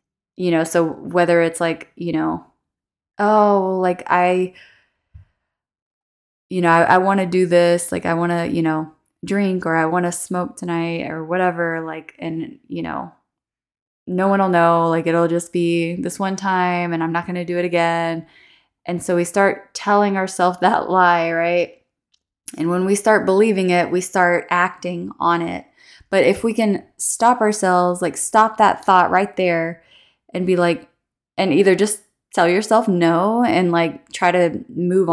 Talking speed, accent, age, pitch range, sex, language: 175 wpm, American, 20-39, 165-185 Hz, female, English